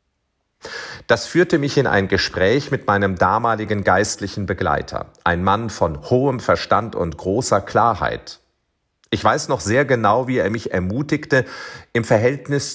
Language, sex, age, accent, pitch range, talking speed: German, male, 40-59, German, 100-140 Hz, 140 wpm